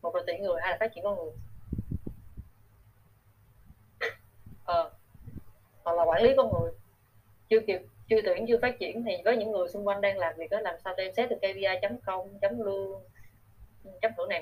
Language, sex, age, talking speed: Vietnamese, female, 20-39, 170 wpm